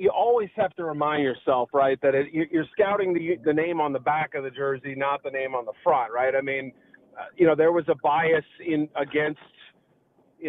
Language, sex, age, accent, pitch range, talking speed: English, male, 40-59, American, 135-170 Hz, 215 wpm